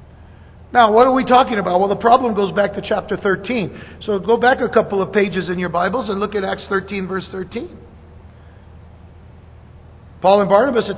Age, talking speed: 50-69, 190 wpm